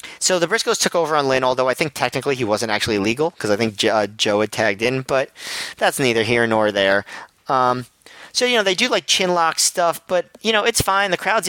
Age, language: 40-59, English